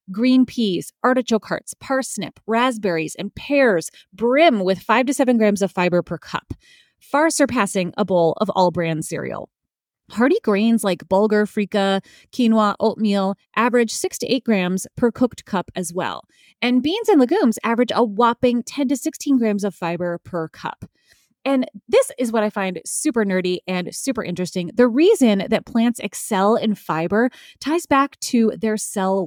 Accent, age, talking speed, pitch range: American, 30-49, 165 wpm, 190-245 Hz